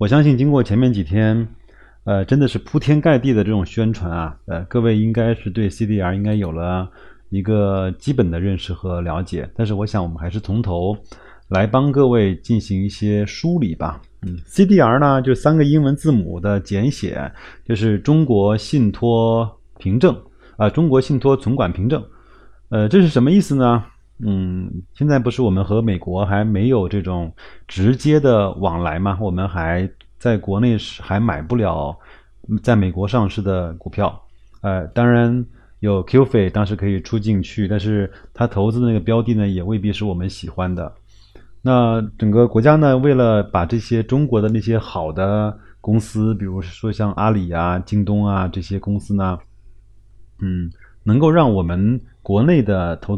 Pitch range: 95-120 Hz